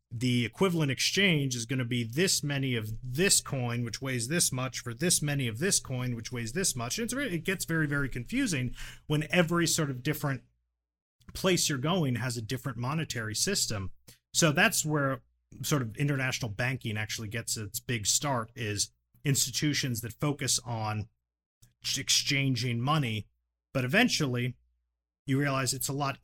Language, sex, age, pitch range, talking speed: English, male, 40-59, 115-140 Hz, 165 wpm